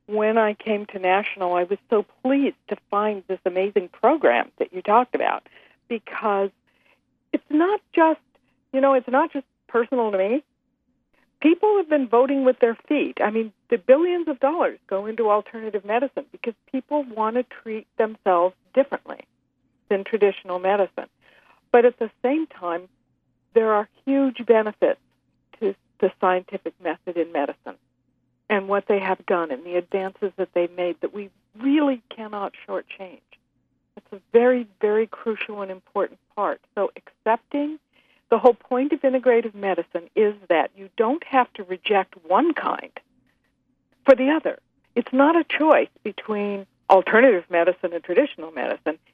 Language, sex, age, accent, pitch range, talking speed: English, female, 60-79, American, 195-260 Hz, 155 wpm